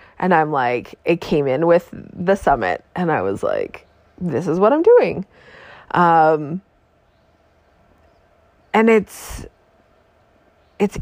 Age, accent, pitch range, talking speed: 20-39, American, 170-220 Hz, 120 wpm